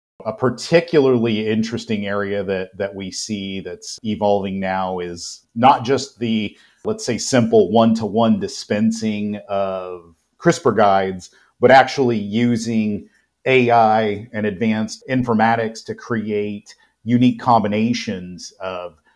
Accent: American